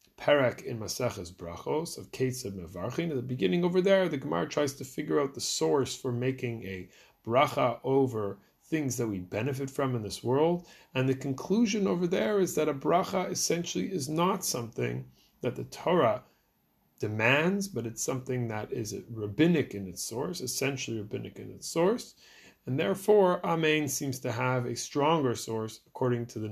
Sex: male